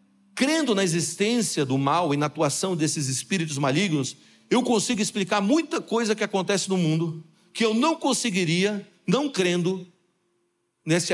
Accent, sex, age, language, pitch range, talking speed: Brazilian, male, 40-59, Portuguese, 160-200 Hz, 145 wpm